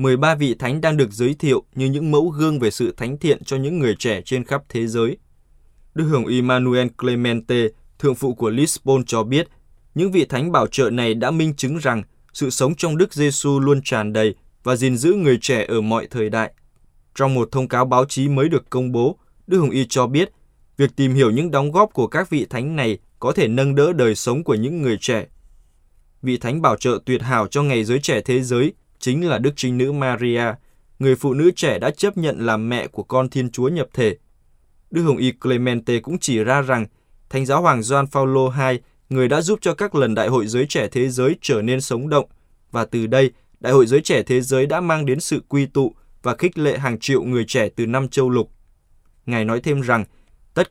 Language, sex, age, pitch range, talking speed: Vietnamese, male, 20-39, 115-140 Hz, 225 wpm